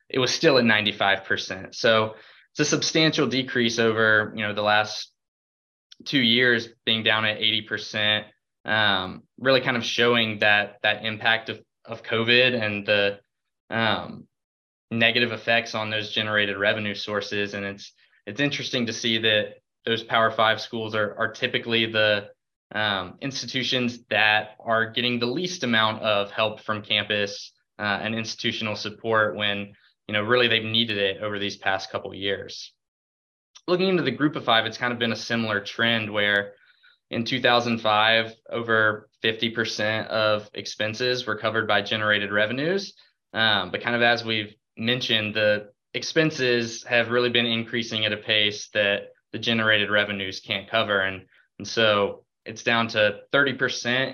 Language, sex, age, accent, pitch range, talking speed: English, male, 20-39, American, 105-120 Hz, 155 wpm